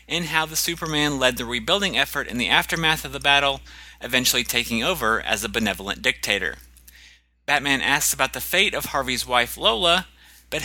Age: 30-49